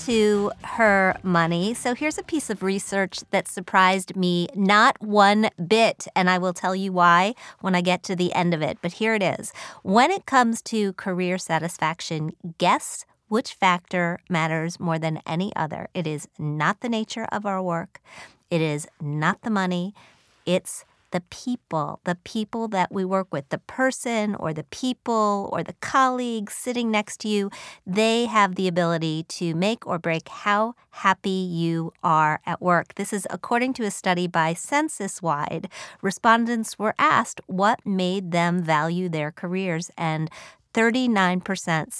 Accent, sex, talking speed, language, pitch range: American, female, 165 wpm, English, 170-215 Hz